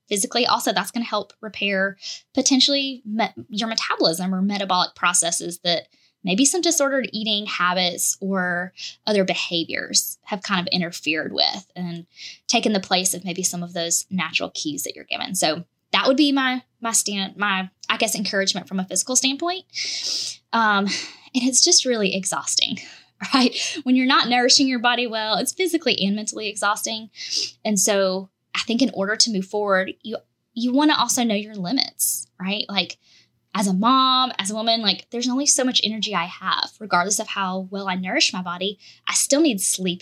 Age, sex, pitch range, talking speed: 10-29, female, 185-235 Hz, 180 wpm